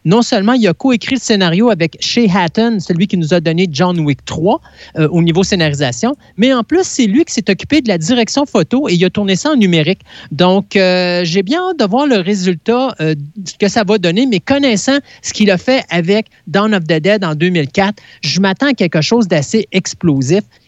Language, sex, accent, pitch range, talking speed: French, male, Canadian, 165-230 Hz, 220 wpm